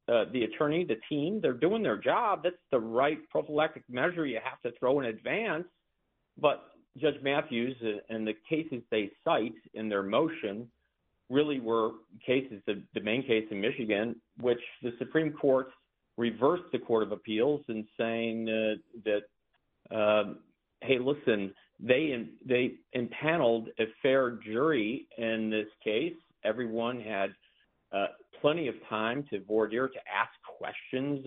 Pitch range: 110-145 Hz